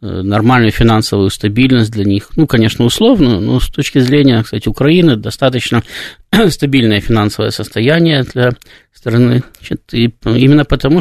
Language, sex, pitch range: Russian, male, 110-140 Hz